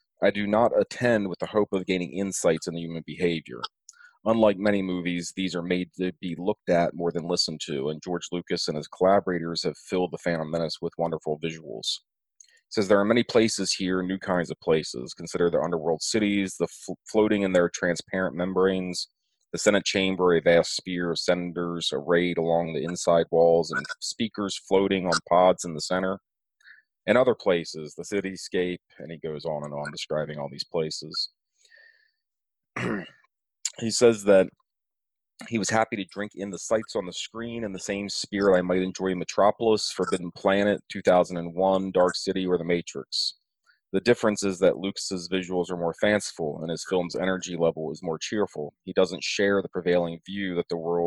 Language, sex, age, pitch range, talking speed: English, male, 30-49, 85-100 Hz, 180 wpm